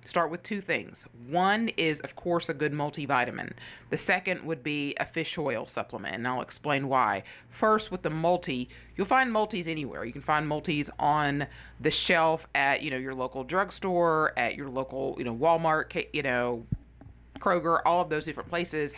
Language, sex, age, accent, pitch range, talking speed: English, female, 30-49, American, 130-165 Hz, 185 wpm